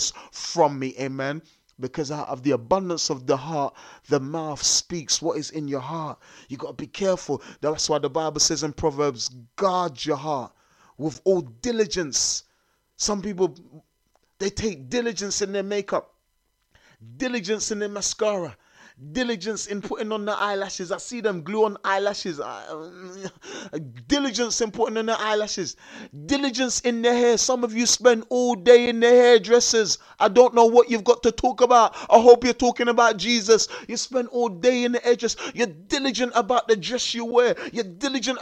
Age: 30-49